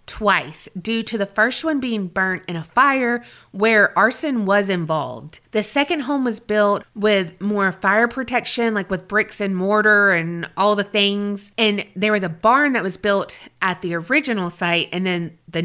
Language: English